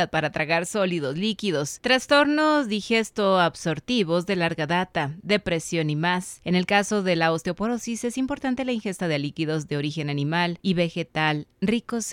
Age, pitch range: 30-49, 165-225 Hz